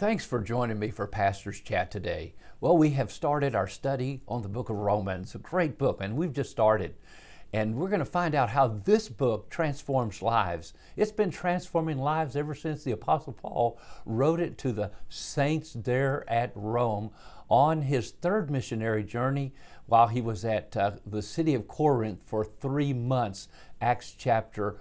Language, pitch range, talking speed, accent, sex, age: English, 110-155 Hz, 175 wpm, American, male, 50-69